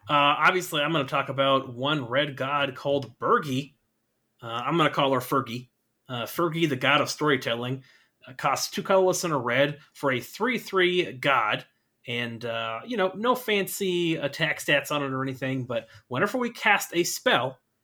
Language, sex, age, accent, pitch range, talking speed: English, male, 30-49, American, 120-165 Hz, 180 wpm